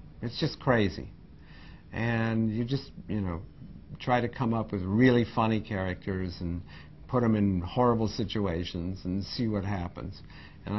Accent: American